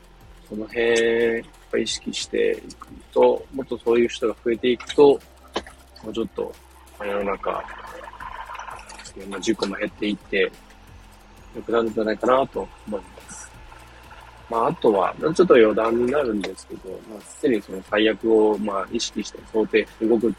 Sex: male